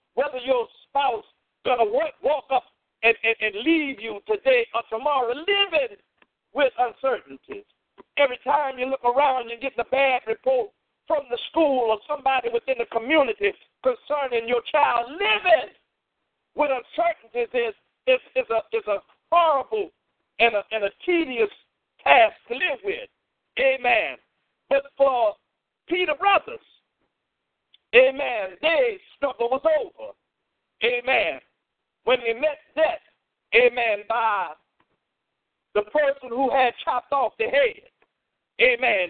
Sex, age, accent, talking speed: male, 50-69, American, 125 wpm